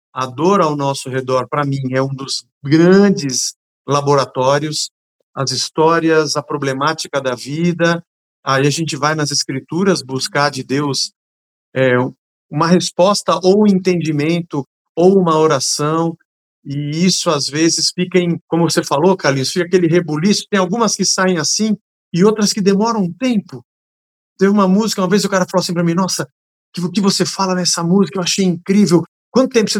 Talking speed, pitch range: 170 wpm, 145-190 Hz